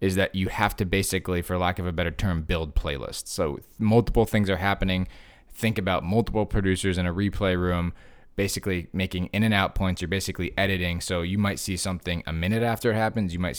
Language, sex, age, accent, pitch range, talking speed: English, male, 20-39, American, 90-105 Hz, 210 wpm